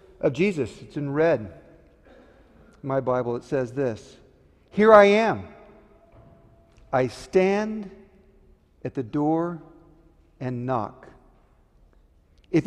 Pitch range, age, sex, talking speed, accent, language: 120-190 Hz, 50-69, male, 100 wpm, American, English